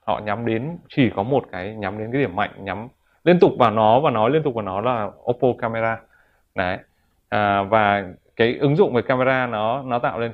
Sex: male